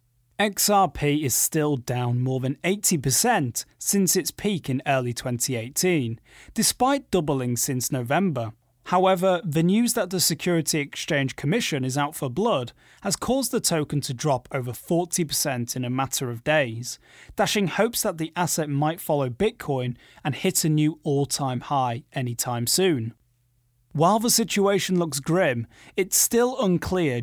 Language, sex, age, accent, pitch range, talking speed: English, male, 30-49, British, 130-185 Hz, 150 wpm